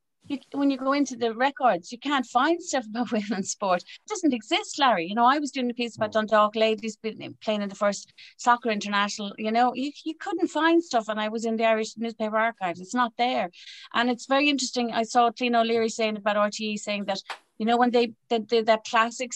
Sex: female